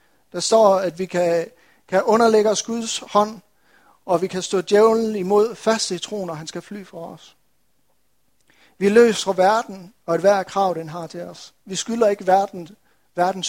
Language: Danish